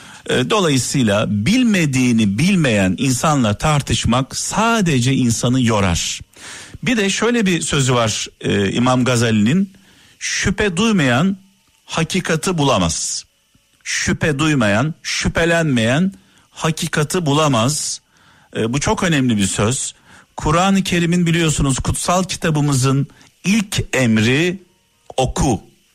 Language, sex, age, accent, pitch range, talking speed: Turkish, male, 50-69, native, 120-180 Hz, 90 wpm